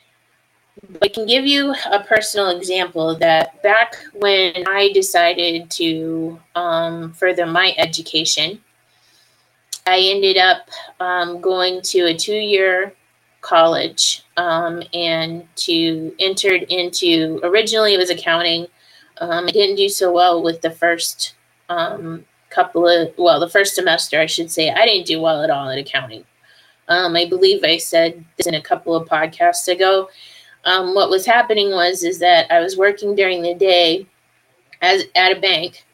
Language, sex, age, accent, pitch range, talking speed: English, female, 20-39, American, 165-200 Hz, 150 wpm